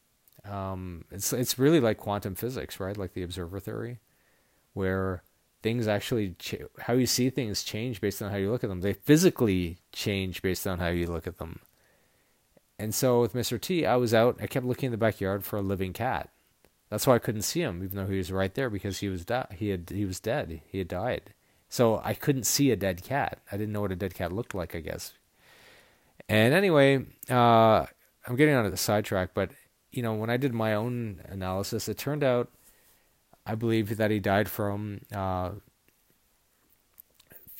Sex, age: male, 30-49